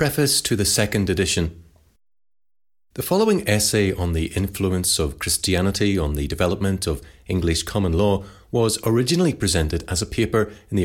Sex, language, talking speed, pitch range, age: male, English, 155 wpm, 85-105 Hz, 30-49